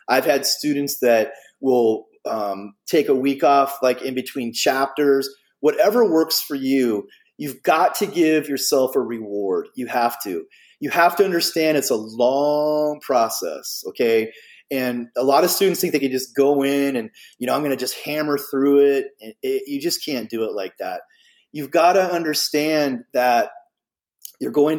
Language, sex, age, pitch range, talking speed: English, male, 30-49, 130-195 Hz, 180 wpm